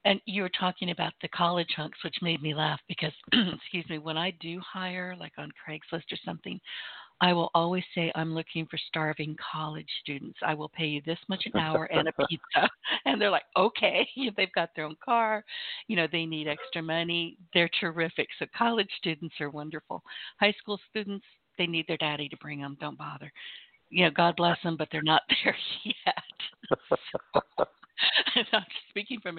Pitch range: 155-185 Hz